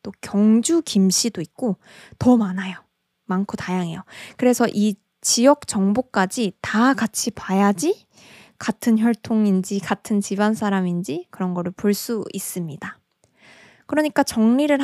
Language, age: Korean, 20-39